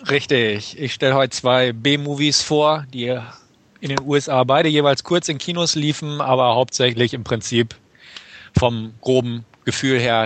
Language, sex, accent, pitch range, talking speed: German, male, German, 120-145 Hz, 145 wpm